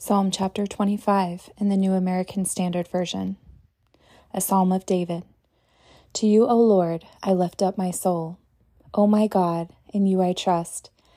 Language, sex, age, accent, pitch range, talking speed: English, female, 20-39, American, 175-200 Hz, 155 wpm